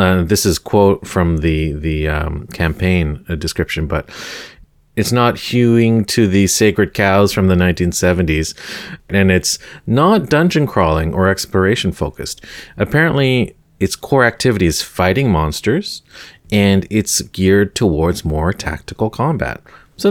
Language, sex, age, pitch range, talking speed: English, male, 40-59, 80-100 Hz, 130 wpm